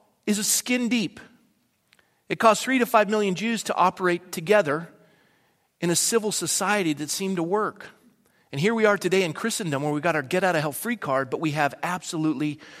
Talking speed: 200 wpm